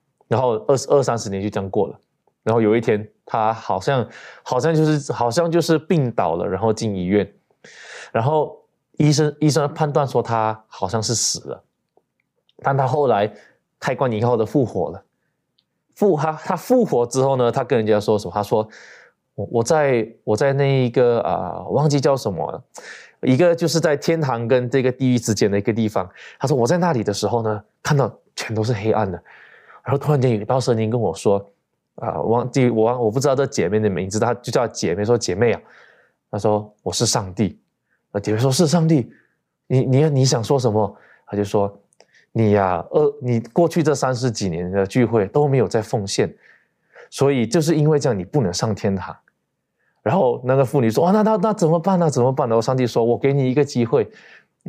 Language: Chinese